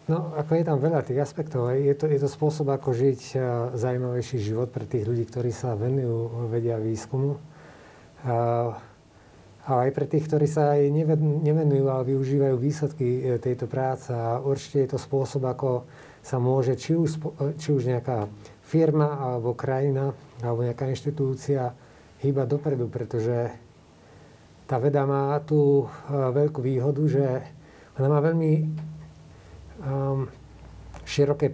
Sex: male